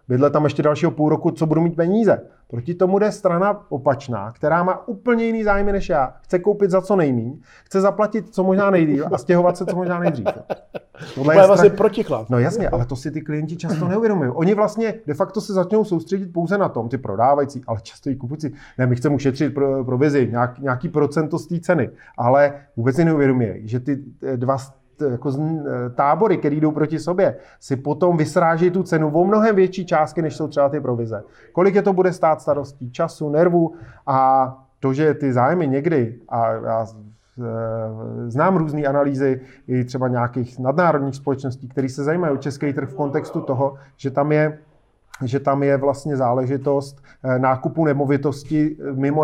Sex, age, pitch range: male, 40-59, 135-170 Hz